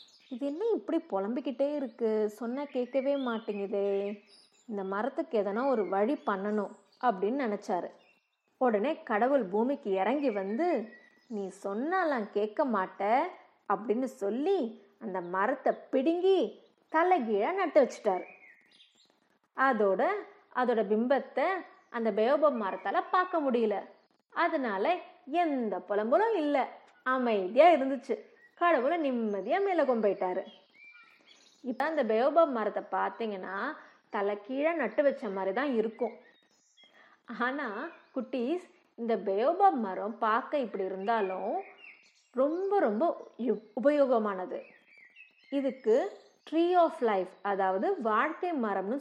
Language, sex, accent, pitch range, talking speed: Tamil, female, native, 210-325 Hz, 95 wpm